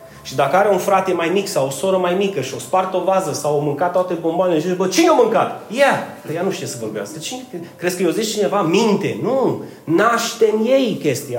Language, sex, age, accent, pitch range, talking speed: Romanian, male, 30-49, native, 165-210 Hz, 240 wpm